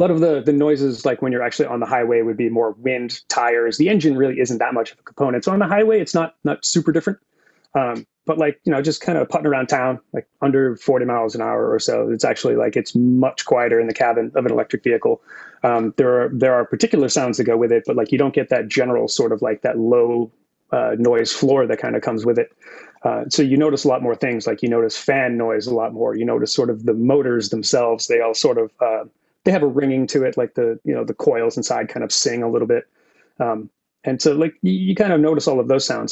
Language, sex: English, male